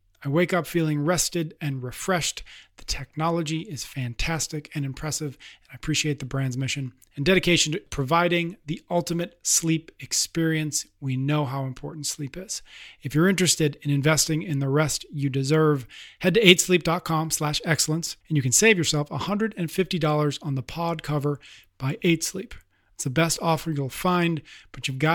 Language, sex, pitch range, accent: English, male, 135-165 Hz, American